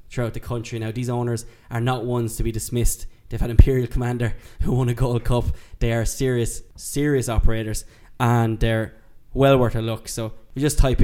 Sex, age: male, 10-29